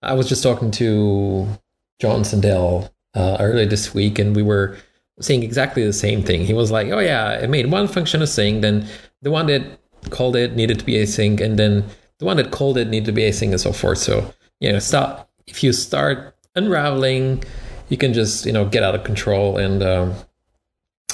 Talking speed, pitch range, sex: 205 wpm, 100-120 Hz, male